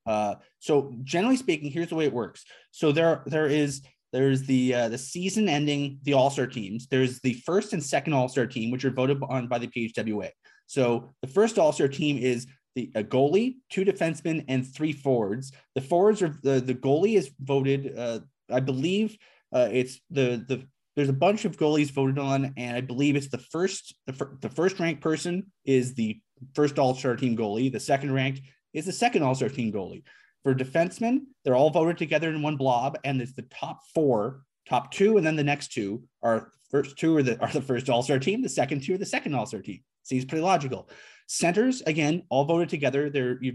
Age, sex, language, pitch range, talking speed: 20-39, male, English, 130-160 Hz, 200 wpm